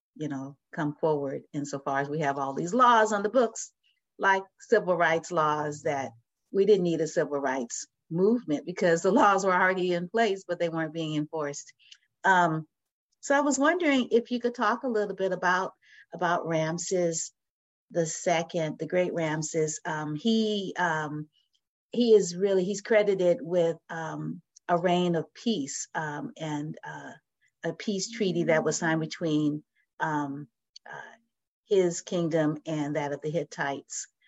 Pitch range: 150-190 Hz